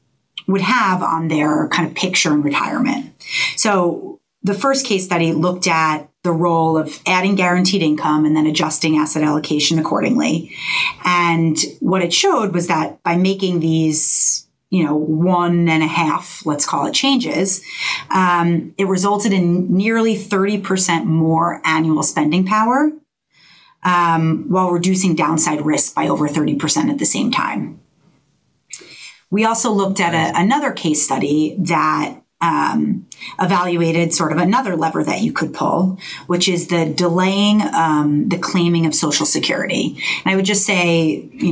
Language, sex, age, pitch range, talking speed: English, female, 30-49, 160-200 Hz, 150 wpm